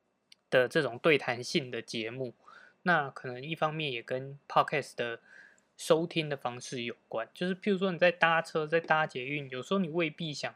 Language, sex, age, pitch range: Chinese, male, 20-39, 125-175 Hz